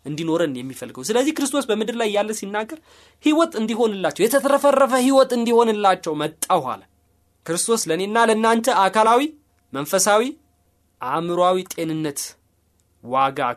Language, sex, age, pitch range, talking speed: Amharic, male, 20-39, 160-260 Hz, 100 wpm